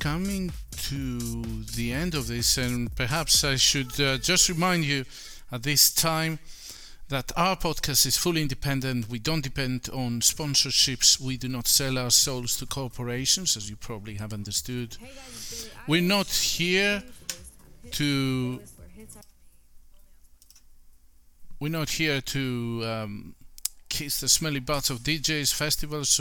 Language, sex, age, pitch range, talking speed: English, male, 50-69, 125-160 Hz, 130 wpm